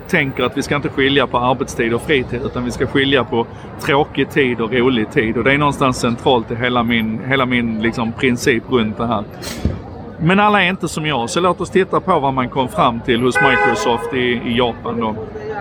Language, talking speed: Swedish, 220 wpm